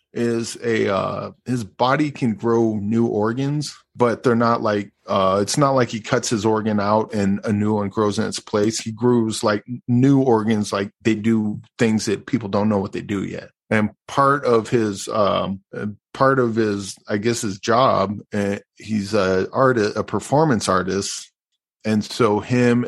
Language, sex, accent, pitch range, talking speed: English, male, American, 105-125 Hz, 180 wpm